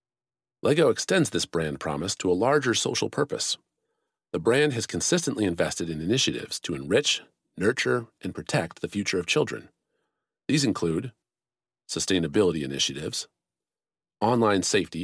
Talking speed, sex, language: 130 wpm, male, English